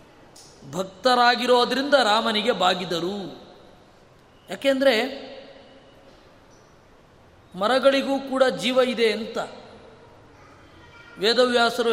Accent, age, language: native, 20-39, Kannada